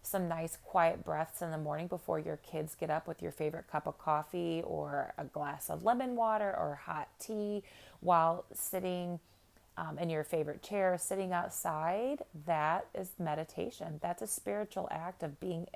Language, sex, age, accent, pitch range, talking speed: English, female, 30-49, American, 150-175 Hz, 170 wpm